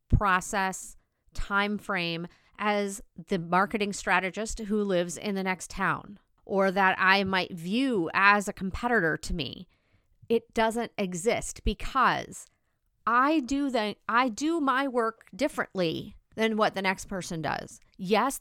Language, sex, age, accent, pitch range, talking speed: English, female, 40-59, American, 185-225 Hz, 135 wpm